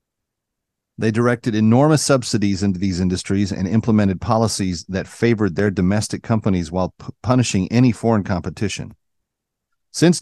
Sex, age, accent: male, 40-59, American